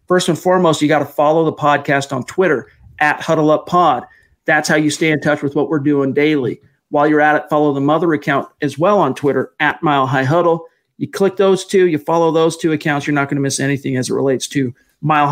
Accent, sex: American, male